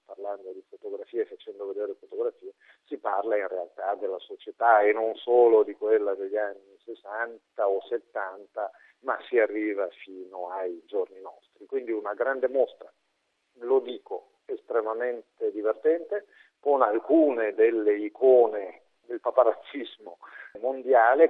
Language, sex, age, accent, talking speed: Italian, male, 50-69, native, 125 wpm